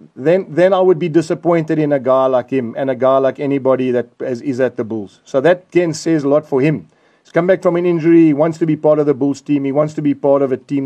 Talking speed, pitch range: 295 wpm, 135-160 Hz